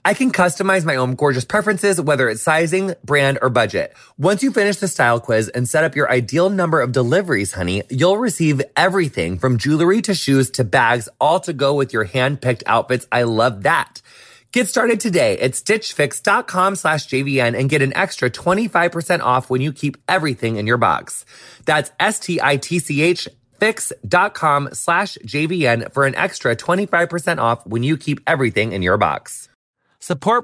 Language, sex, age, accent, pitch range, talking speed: English, male, 30-49, American, 130-195 Hz, 170 wpm